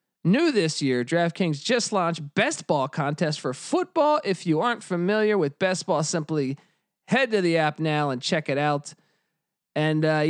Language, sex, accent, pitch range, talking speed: English, male, American, 160-220 Hz, 175 wpm